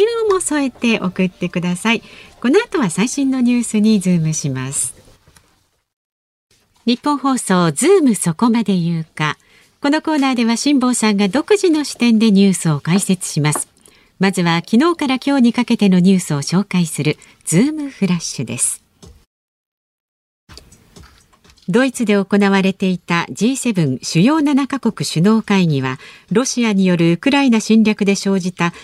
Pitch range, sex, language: 165-245 Hz, female, Japanese